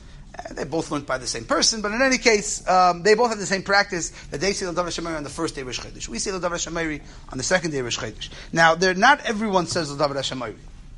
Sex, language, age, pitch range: male, English, 30-49, 155-215 Hz